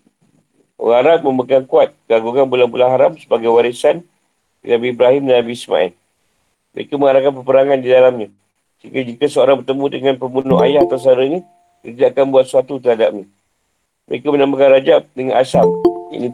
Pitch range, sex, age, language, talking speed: 115-135 Hz, male, 50-69, Malay, 140 wpm